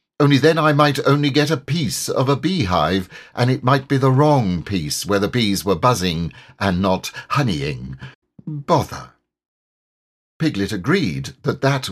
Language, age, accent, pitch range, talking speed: English, 50-69, British, 100-160 Hz, 155 wpm